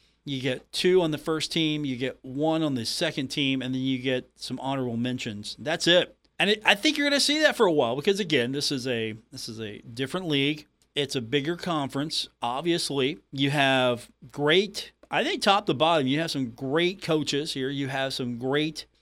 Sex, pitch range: male, 125-160 Hz